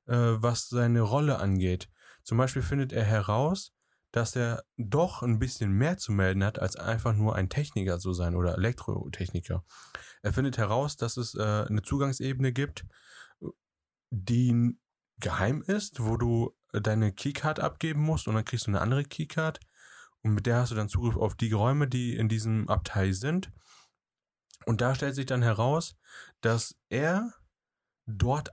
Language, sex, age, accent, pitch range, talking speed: German, male, 30-49, German, 105-130 Hz, 160 wpm